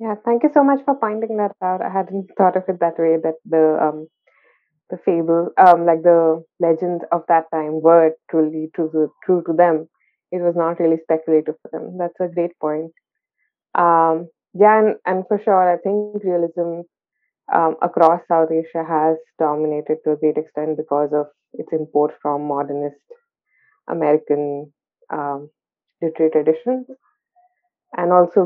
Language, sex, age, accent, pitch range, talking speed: English, female, 20-39, Indian, 160-205 Hz, 160 wpm